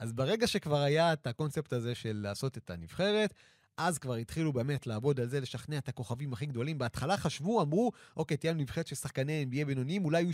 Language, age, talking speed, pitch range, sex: Hebrew, 30-49, 205 wpm, 115-150 Hz, male